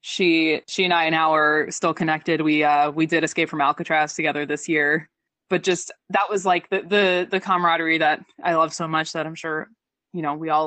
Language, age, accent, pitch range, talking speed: English, 20-39, American, 160-205 Hz, 220 wpm